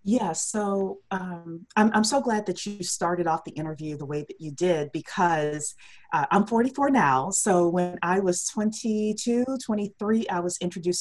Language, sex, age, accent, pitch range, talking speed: English, female, 40-59, American, 160-205 Hz, 175 wpm